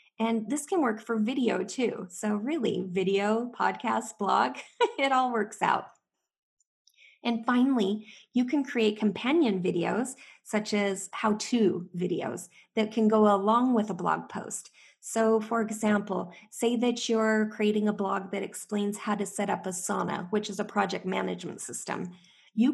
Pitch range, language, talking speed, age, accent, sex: 195-235 Hz, English, 155 wpm, 20-39, American, female